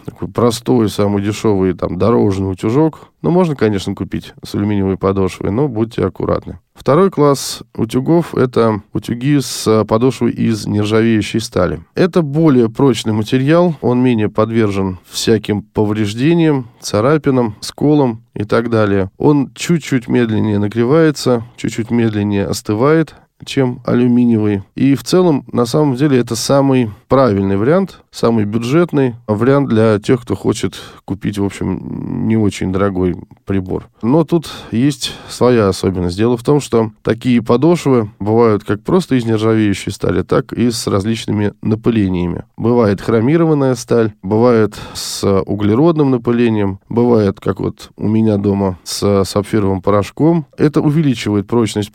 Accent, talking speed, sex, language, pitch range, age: native, 130 wpm, male, Russian, 105-130 Hz, 20-39